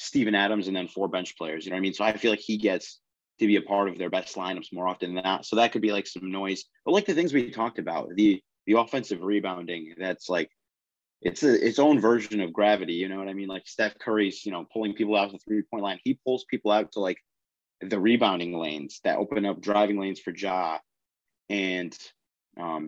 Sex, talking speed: male, 245 wpm